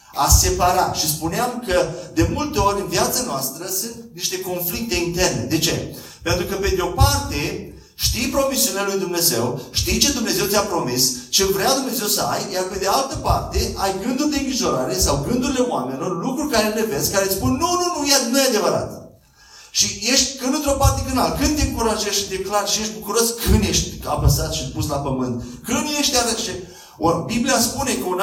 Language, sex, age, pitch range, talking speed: Romanian, male, 40-59, 170-230 Hz, 200 wpm